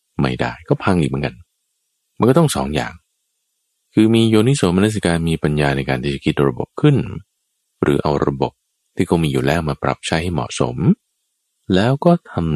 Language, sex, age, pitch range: Thai, male, 20-39, 70-85 Hz